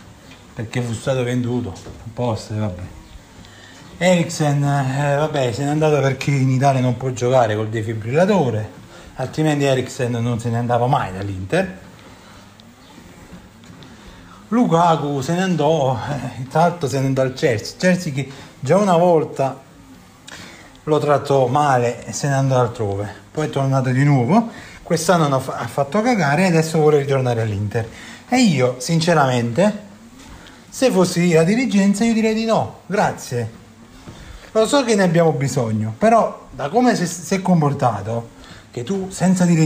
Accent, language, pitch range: native, Italian, 120-180 Hz